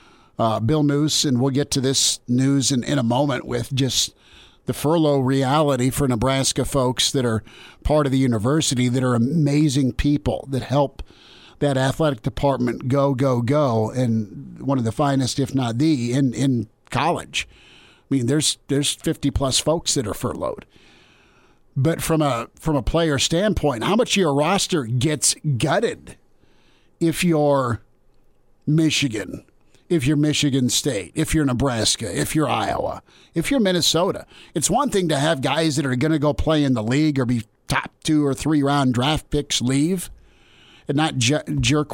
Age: 50-69